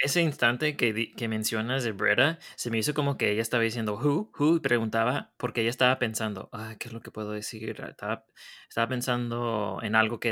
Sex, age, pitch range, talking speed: male, 20-39, 105-130 Hz, 210 wpm